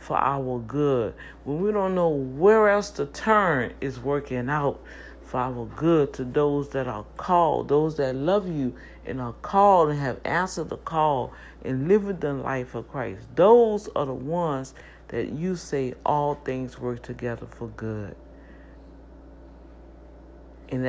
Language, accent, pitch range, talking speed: English, American, 115-150 Hz, 155 wpm